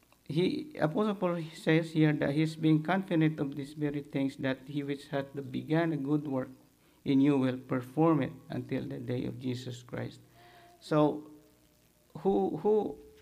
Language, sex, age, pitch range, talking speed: English, male, 50-69, 125-155 Hz, 165 wpm